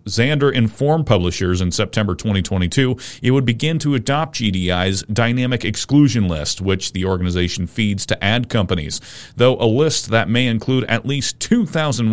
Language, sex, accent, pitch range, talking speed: English, male, American, 95-125 Hz, 155 wpm